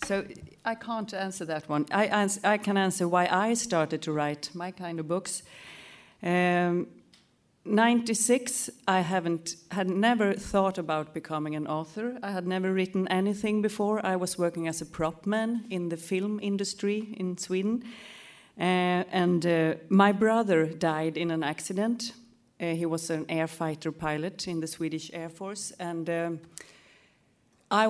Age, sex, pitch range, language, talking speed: 40-59, female, 160-195 Hz, English, 155 wpm